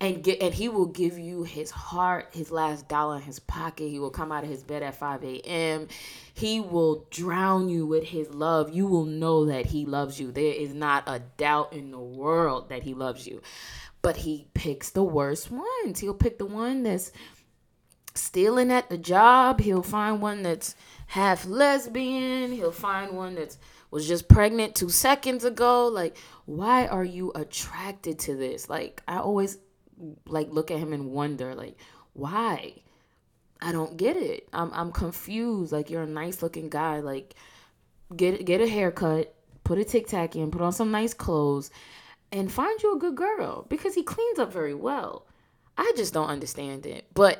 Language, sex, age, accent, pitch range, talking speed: English, female, 20-39, American, 145-195 Hz, 185 wpm